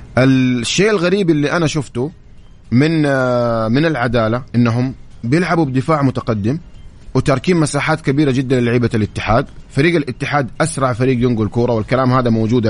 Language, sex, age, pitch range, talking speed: English, male, 30-49, 115-150 Hz, 130 wpm